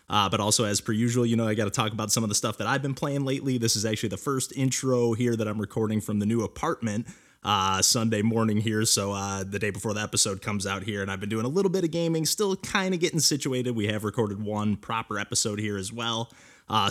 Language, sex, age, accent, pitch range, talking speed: English, male, 20-39, American, 105-130 Hz, 265 wpm